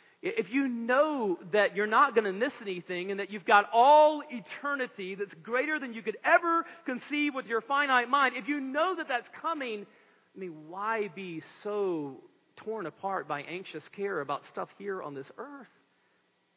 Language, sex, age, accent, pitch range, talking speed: English, male, 40-59, American, 180-265 Hz, 180 wpm